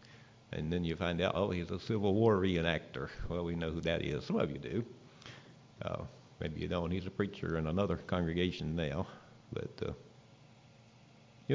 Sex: male